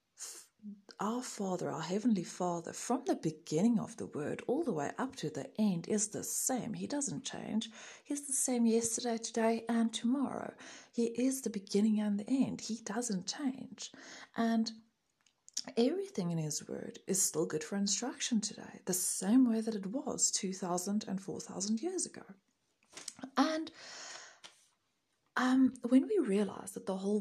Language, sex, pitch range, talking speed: English, female, 190-245 Hz, 155 wpm